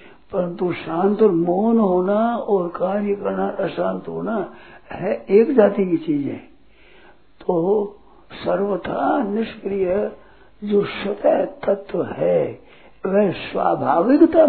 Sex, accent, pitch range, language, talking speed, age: male, native, 185-235 Hz, Hindi, 110 wpm, 60-79